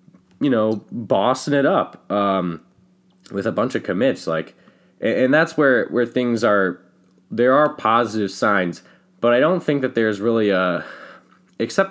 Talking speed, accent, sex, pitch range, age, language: 155 wpm, American, male, 90-115 Hz, 20-39, English